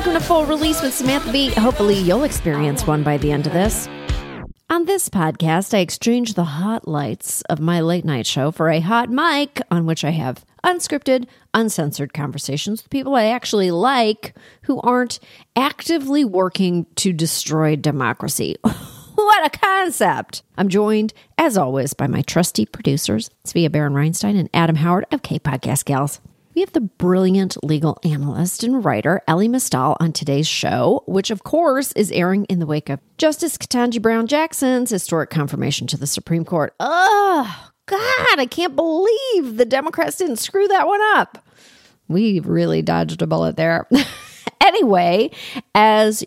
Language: English